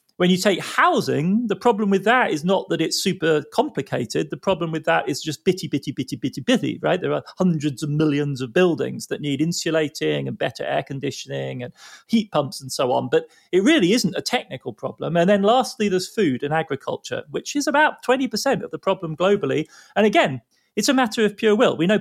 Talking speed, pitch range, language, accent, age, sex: 215 wpm, 140-190 Hz, English, British, 30-49, male